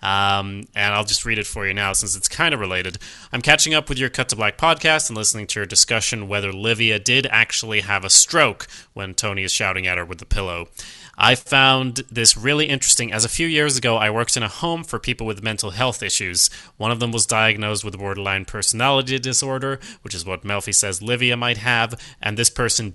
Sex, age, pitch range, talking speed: male, 30-49, 100-125 Hz, 220 wpm